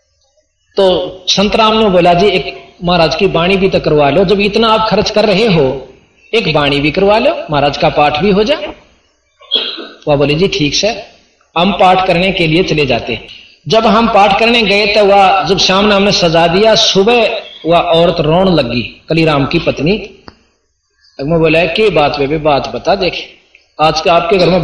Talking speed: 195 wpm